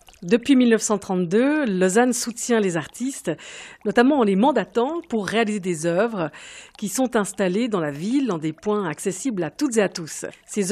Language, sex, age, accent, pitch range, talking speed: French, female, 50-69, French, 180-245 Hz, 170 wpm